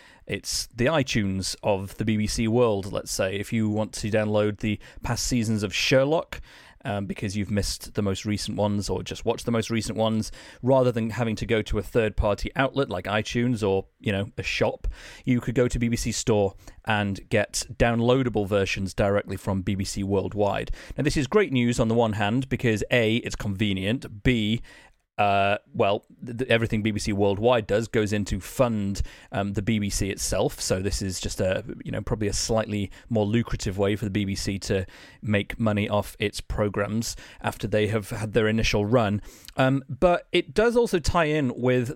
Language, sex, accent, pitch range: English, male, British, 100-120 Hz